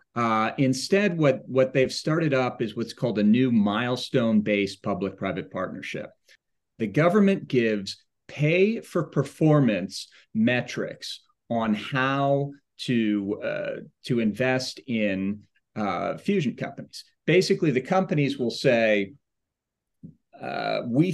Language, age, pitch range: English, 40-59, 110-145 Hz